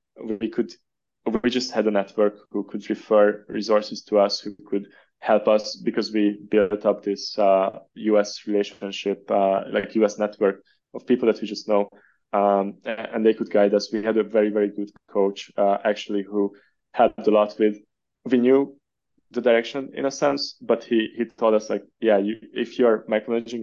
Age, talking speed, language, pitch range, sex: 20-39, 190 wpm, English, 105-115 Hz, male